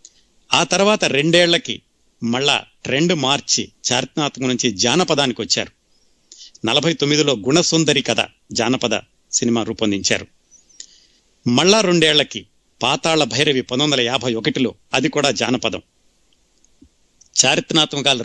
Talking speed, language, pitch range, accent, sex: 90 wpm, Telugu, 120-160 Hz, native, male